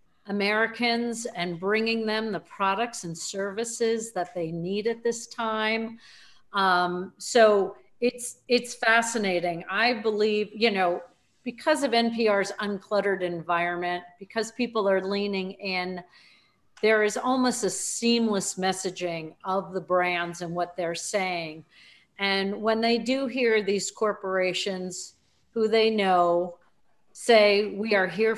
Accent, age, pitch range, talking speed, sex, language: American, 50-69, 185-230 Hz, 125 wpm, female, English